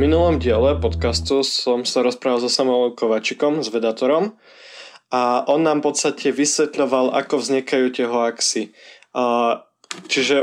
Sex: male